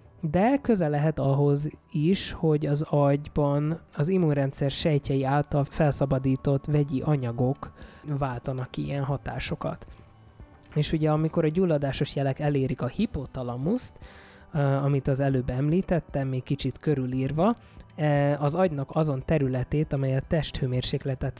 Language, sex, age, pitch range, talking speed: Hungarian, male, 20-39, 135-155 Hz, 120 wpm